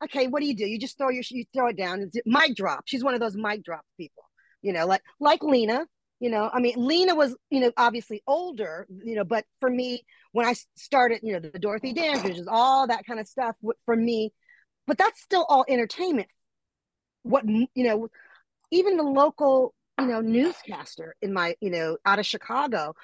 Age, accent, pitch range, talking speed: 40-59, American, 205-275 Hz, 215 wpm